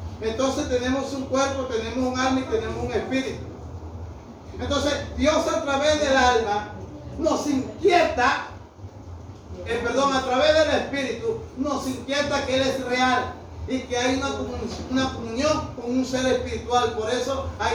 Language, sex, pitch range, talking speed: Spanish, male, 225-275 Hz, 150 wpm